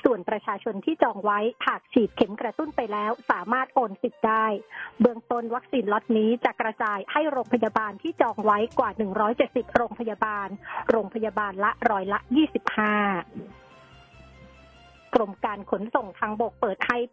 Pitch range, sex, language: 210-255 Hz, female, Thai